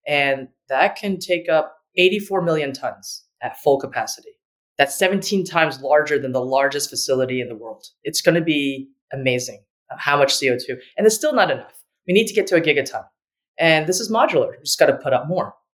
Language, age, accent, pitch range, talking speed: English, 30-49, American, 125-160 Hz, 200 wpm